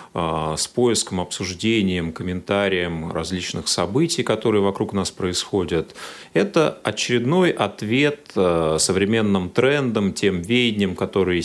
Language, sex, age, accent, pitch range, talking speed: Russian, male, 30-49, native, 90-135 Hz, 95 wpm